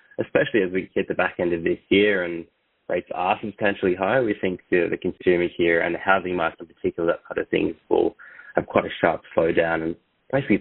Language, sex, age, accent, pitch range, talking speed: English, male, 20-39, Australian, 85-105 Hz, 225 wpm